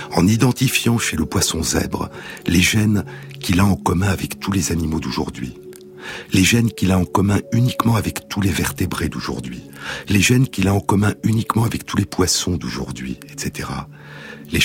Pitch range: 80-105 Hz